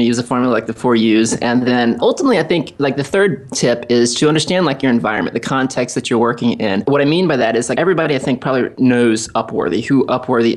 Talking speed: 250 wpm